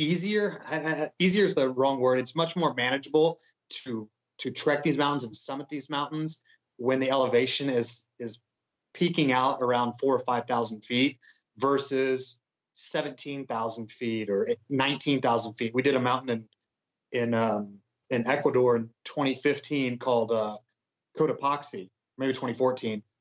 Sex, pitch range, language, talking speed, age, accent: male, 120-155 Hz, English, 135 wpm, 30-49, American